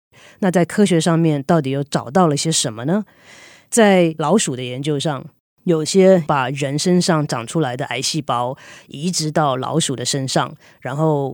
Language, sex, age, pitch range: Chinese, female, 30-49, 145-175 Hz